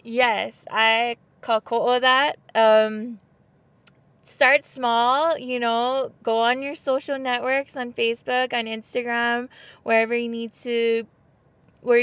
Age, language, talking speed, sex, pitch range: 20-39, English, 115 wpm, female, 215-250 Hz